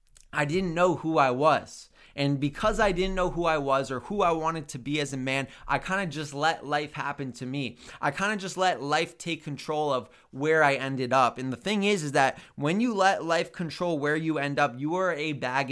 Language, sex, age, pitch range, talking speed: English, male, 20-39, 130-155 Hz, 245 wpm